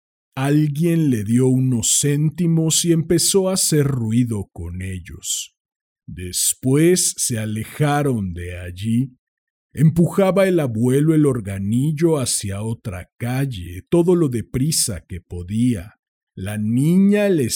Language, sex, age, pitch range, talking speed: Spanish, male, 50-69, 105-150 Hz, 115 wpm